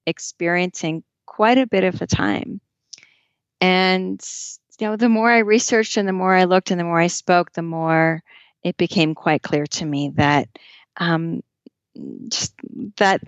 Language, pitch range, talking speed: English, 155-185 Hz, 155 wpm